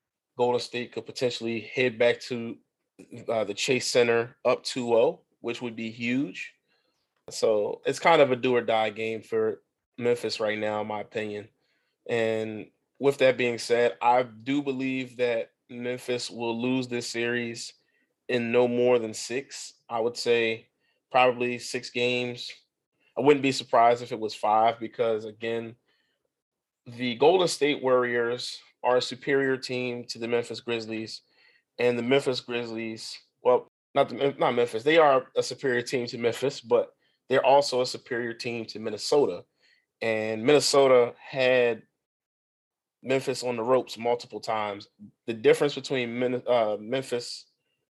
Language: English